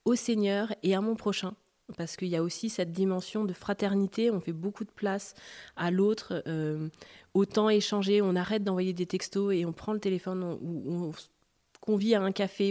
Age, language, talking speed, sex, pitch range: 30-49, French, 195 wpm, female, 165-200 Hz